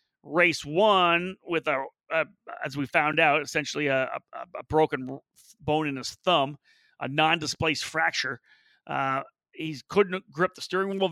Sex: male